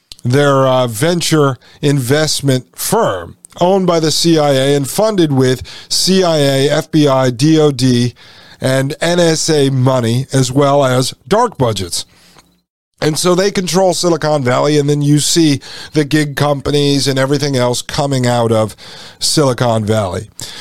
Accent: American